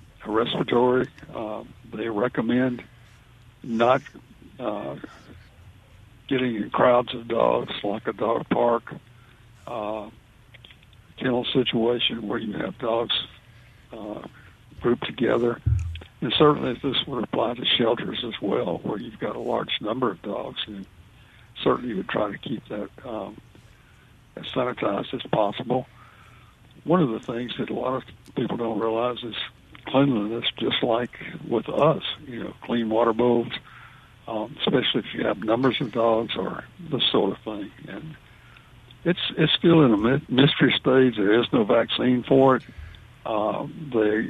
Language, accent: English, American